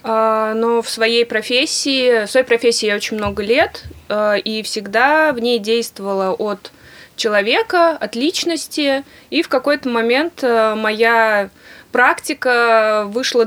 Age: 20-39